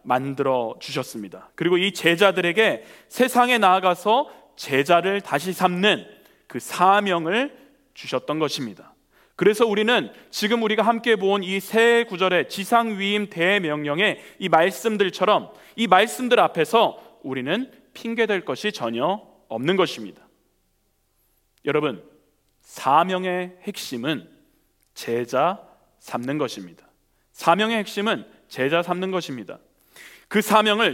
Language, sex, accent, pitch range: Korean, male, native, 170-235 Hz